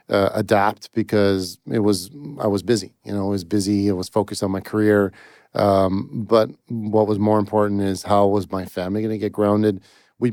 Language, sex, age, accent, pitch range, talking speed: English, male, 40-59, American, 100-110 Hz, 205 wpm